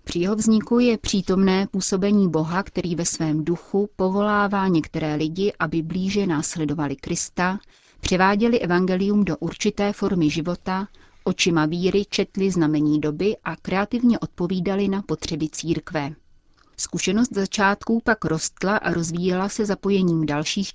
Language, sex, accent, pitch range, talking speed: Czech, female, native, 160-200 Hz, 125 wpm